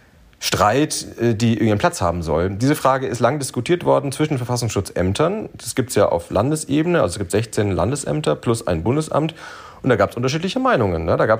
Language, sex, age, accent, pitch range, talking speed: German, male, 30-49, German, 95-130 Hz, 195 wpm